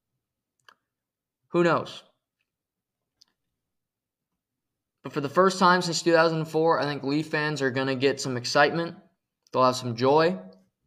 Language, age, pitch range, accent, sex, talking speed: English, 20-39, 130-160 Hz, American, male, 125 wpm